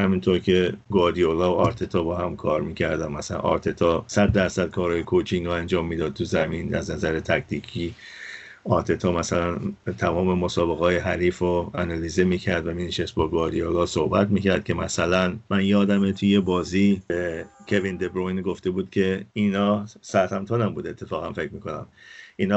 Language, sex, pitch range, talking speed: Persian, male, 90-105 Hz, 160 wpm